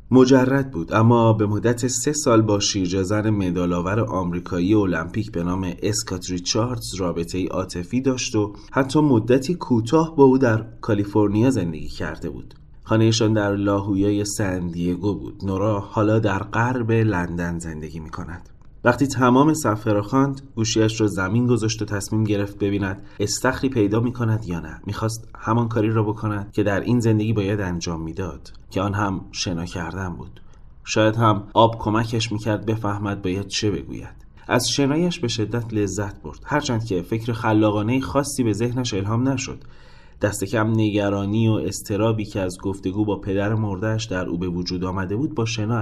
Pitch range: 95-120 Hz